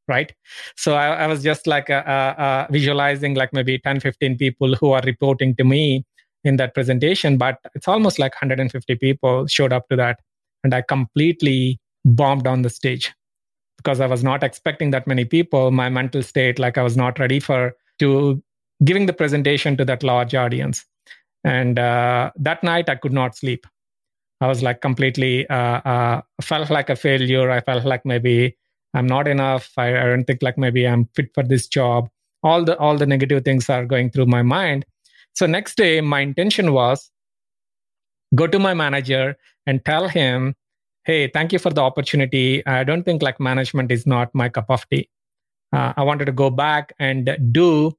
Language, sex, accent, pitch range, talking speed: English, male, Indian, 130-145 Hz, 190 wpm